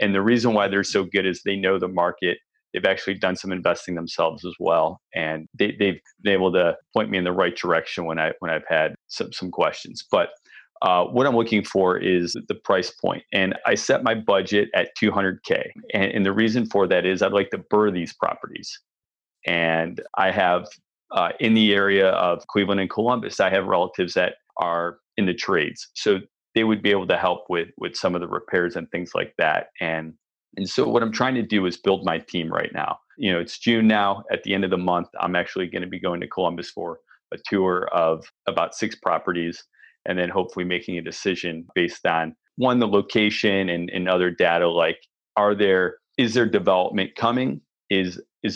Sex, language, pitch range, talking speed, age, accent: male, English, 90-105 Hz, 215 wpm, 30-49, American